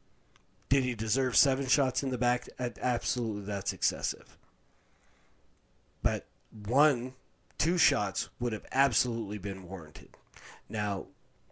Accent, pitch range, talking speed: American, 105-135 Hz, 110 wpm